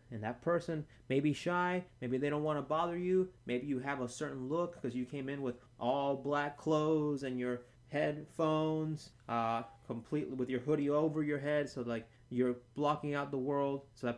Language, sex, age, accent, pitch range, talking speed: English, male, 30-49, American, 120-150 Hz, 200 wpm